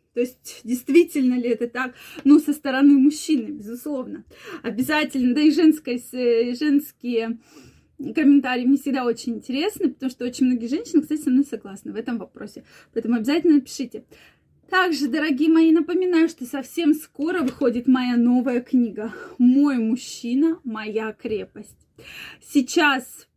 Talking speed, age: 135 wpm, 20-39